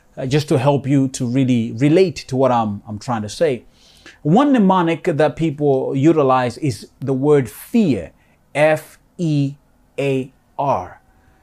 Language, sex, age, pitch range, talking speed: English, male, 30-49, 130-185 Hz, 130 wpm